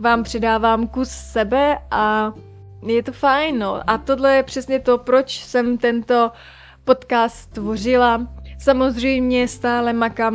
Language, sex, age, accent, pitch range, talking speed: Czech, female, 20-39, native, 220-250 Hz, 120 wpm